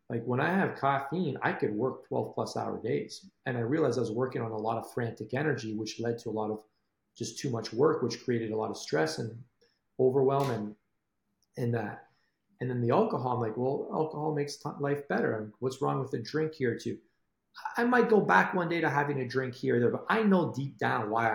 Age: 40-59